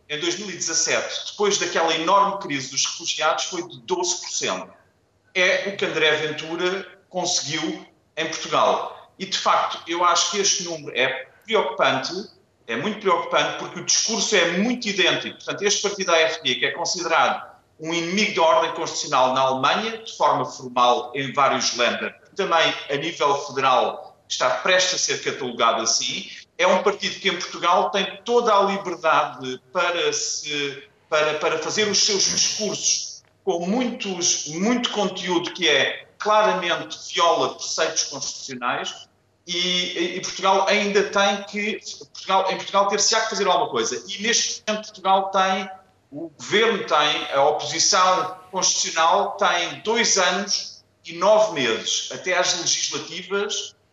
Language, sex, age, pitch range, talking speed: Portuguese, male, 30-49, 165-200 Hz, 140 wpm